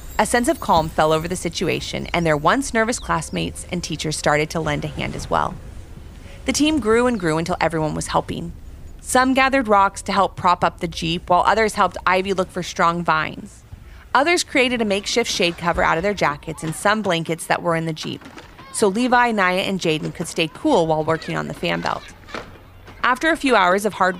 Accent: American